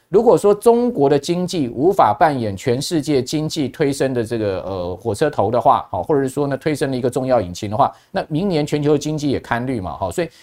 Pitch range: 130-165 Hz